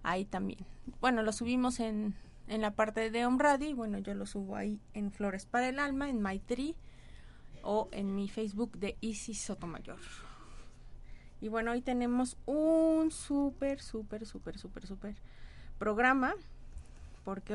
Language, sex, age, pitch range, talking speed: Spanish, female, 30-49, 200-240 Hz, 145 wpm